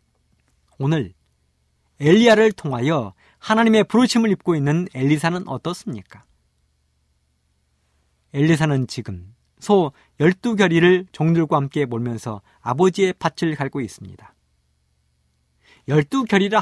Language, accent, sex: Korean, native, male